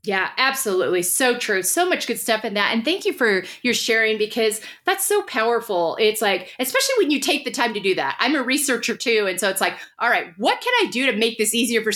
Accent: American